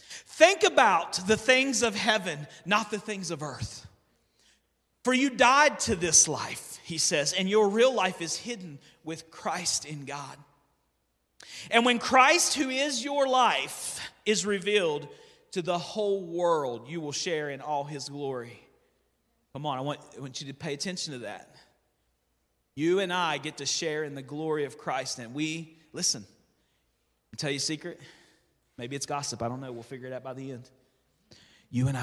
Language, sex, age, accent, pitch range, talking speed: English, male, 40-59, American, 120-170 Hz, 175 wpm